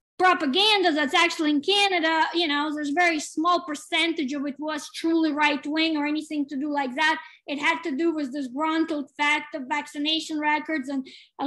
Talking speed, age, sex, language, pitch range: 190 wpm, 20-39, female, English, 290-325 Hz